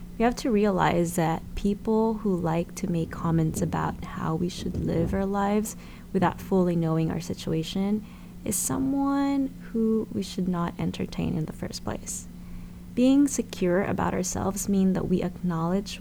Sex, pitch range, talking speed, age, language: female, 155-190 Hz, 155 wpm, 20-39, English